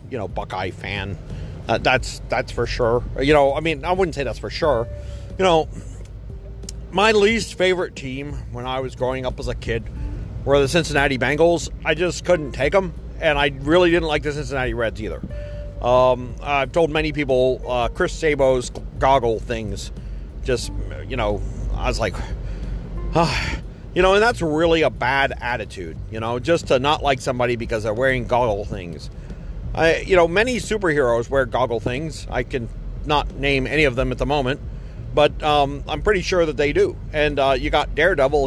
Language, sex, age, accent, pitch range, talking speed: English, male, 40-59, American, 115-160 Hz, 185 wpm